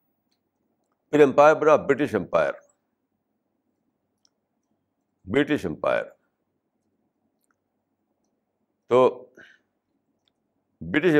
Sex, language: male, Urdu